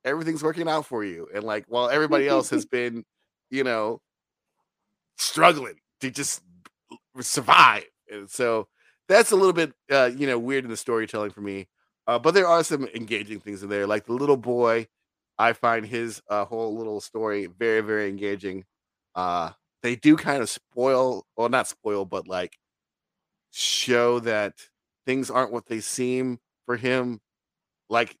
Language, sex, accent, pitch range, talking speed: English, male, American, 110-135 Hz, 165 wpm